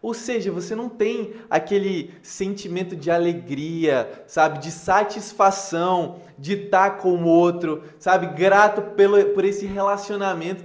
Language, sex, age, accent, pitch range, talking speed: Portuguese, male, 20-39, Brazilian, 175-225 Hz, 135 wpm